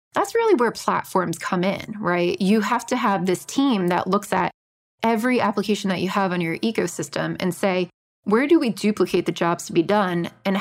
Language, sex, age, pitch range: English, female, 20-39, 175-215 Hz